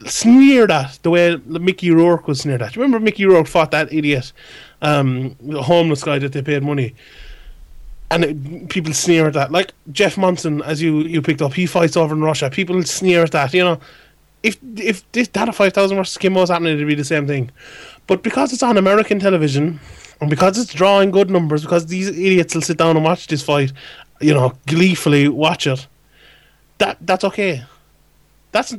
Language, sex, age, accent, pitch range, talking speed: English, male, 20-39, Irish, 145-185 Hz, 195 wpm